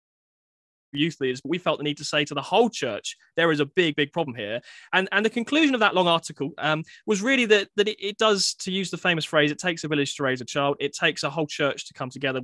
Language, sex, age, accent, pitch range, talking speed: English, male, 20-39, British, 140-200 Hz, 275 wpm